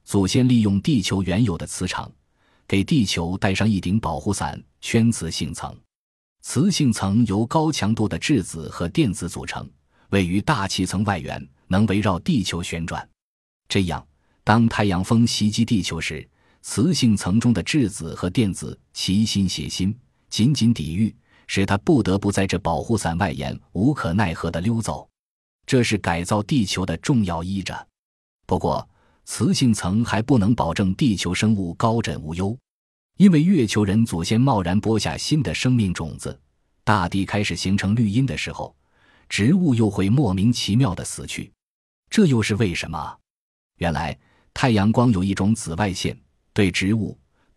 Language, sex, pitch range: Chinese, male, 90-115 Hz